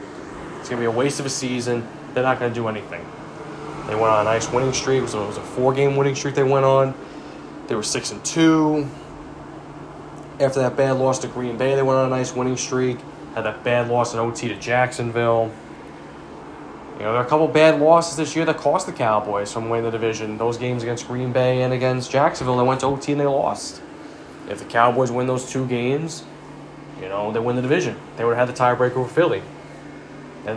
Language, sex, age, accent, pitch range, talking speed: English, male, 20-39, American, 115-135 Hz, 220 wpm